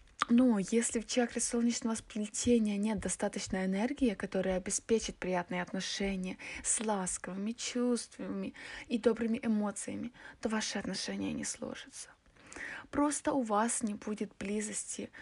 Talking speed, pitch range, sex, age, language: 120 wpm, 210-245 Hz, female, 20-39, Russian